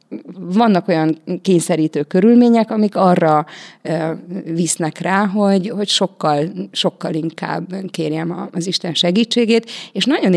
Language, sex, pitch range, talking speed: Hungarian, female, 170-195 Hz, 110 wpm